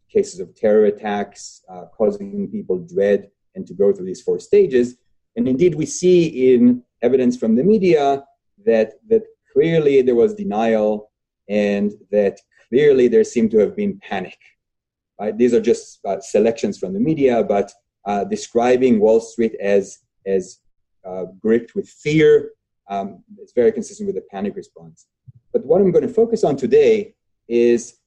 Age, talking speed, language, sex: 30-49, 160 wpm, English, male